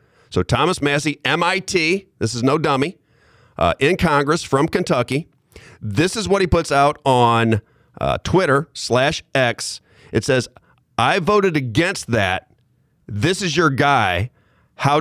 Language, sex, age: English, male, 40-59